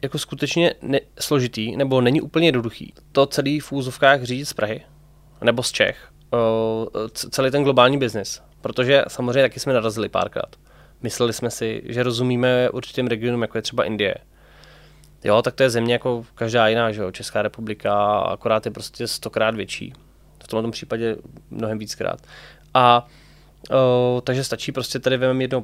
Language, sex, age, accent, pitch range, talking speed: Czech, male, 20-39, native, 115-135 Hz, 165 wpm